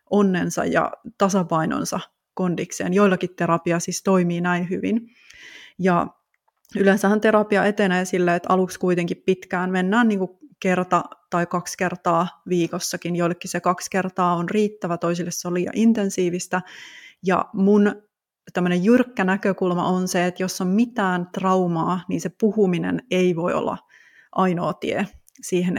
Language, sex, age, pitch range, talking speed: Finnish, female, 30-49, 175-195 Hz, 135 wpm